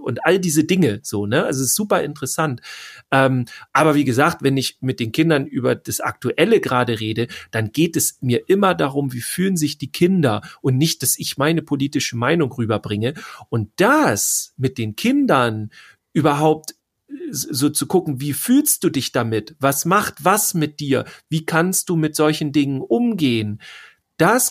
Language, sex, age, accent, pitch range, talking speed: German, male, 40-59, German, 125-165 Hz, 175 wpm